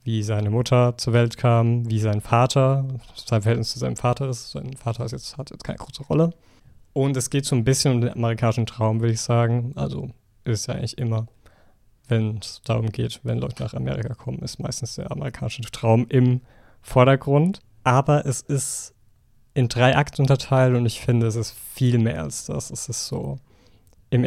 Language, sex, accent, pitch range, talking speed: German, male, German, 110-125 Hz, 195 wpm